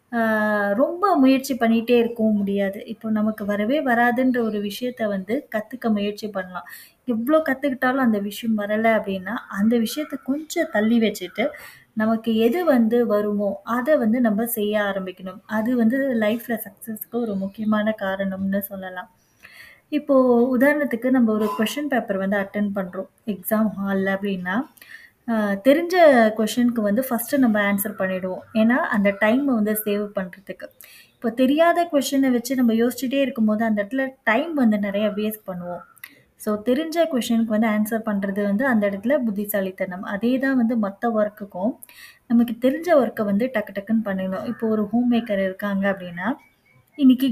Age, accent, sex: 20-39, native, female